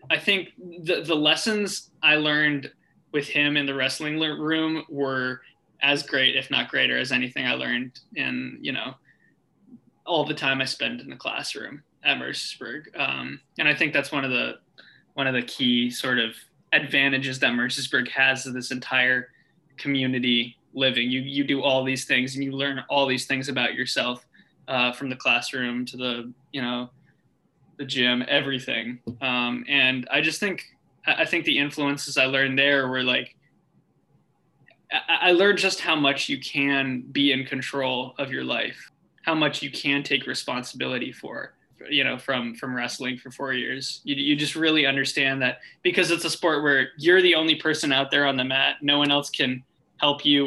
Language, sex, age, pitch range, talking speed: English, male, 20-39, 130-145 Hz, 180 wpm